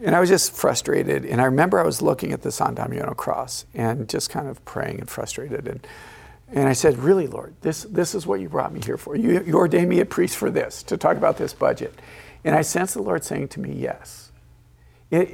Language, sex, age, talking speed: English, male, 50-69, 240 wpm